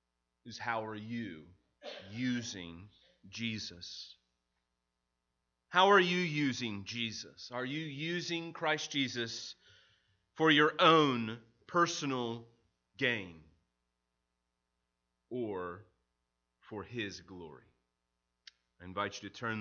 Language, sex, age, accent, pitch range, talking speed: English, male, 30-49, American, 90-130 Hz, 90 wpm